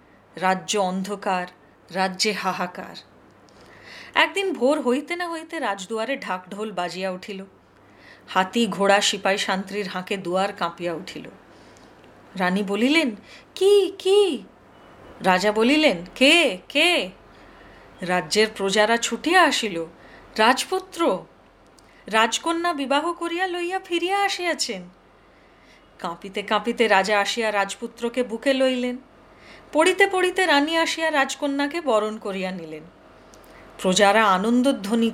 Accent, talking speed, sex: native, 85 wpm, female